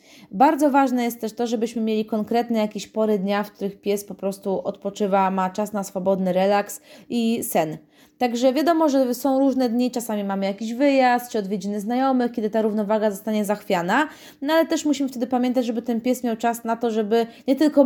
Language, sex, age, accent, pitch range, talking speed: Polish, female, 20-39, native, 210-270 Hz, 195 wpm